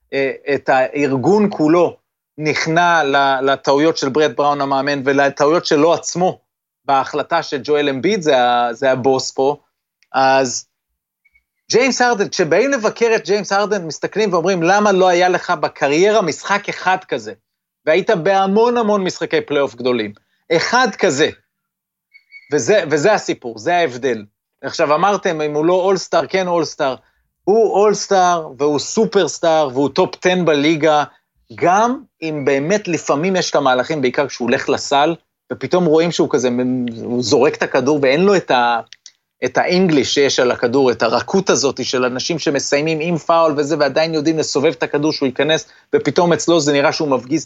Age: 30-49